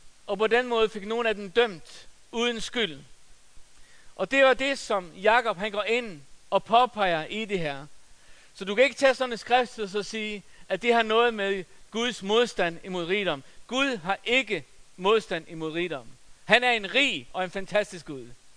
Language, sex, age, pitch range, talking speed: Danish, male, 60-79, 180-235 Hz, 185 wpm